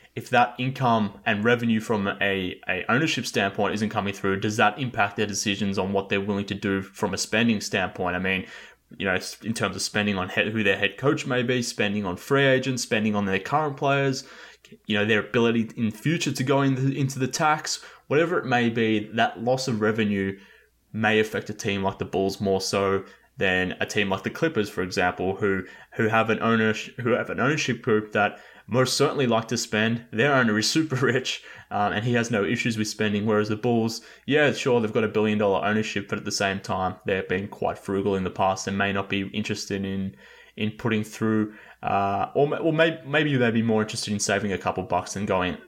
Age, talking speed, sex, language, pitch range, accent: 20-39, 225 wpm, male, English, 100-120 Hz, Australian